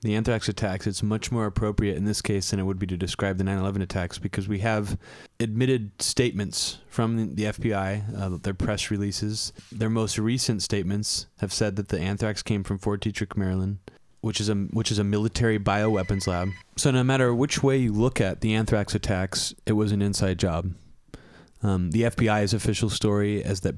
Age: 20-39